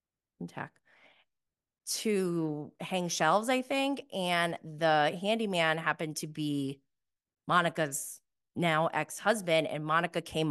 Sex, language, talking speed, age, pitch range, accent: female, English, 95 wpm, 30-49, 160-230 Hz, American